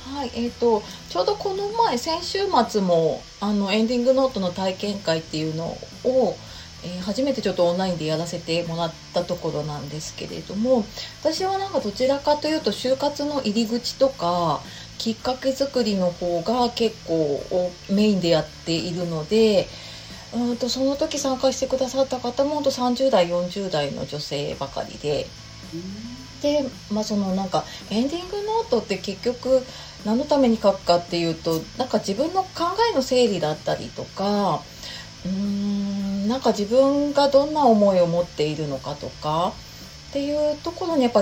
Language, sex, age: Japanese, female, 30-49